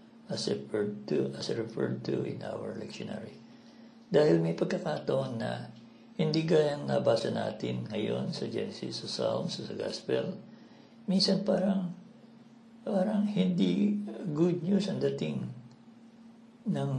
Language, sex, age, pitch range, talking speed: Filipino, male, 60-79, 145-230 Hz, 115 wpm